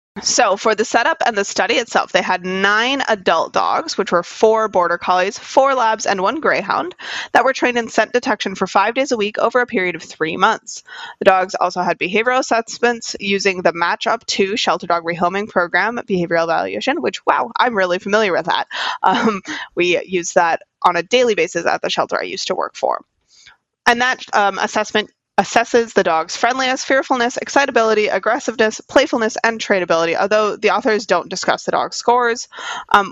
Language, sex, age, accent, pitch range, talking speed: English, female, 20-39, American, 185-260 Hz, 185 wpm